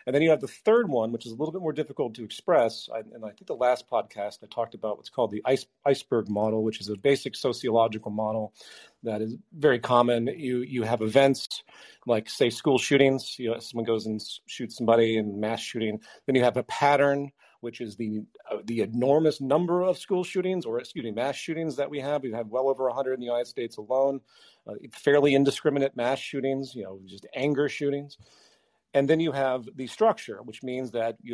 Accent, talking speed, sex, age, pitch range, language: American, 215 wpm, male, 40-59, 115-155 Hz, English